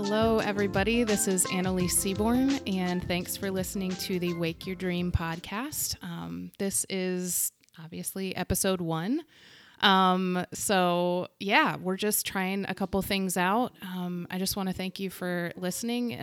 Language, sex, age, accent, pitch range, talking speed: English, female, 30-49, American, 175-210 Hz, 150 wpm